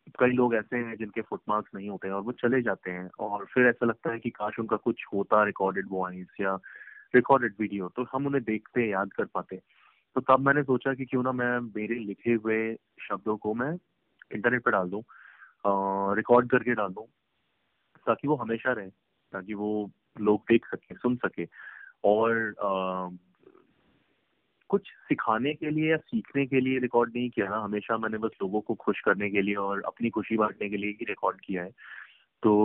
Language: English